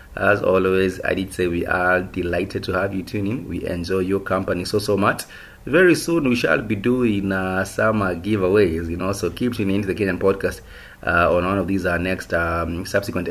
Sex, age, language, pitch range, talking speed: male, 30-49, English, 90-105 Hz, 205 wpm